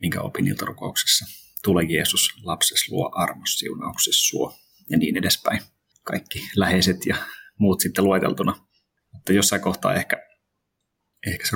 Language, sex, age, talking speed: Finnish, male, 30-49, 125 wpm